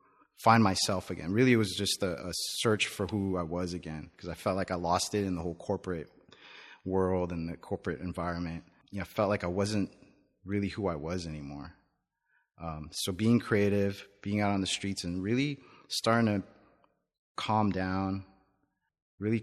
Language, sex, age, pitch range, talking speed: English, male, 30-49, 90-110 Hz, 180 wpm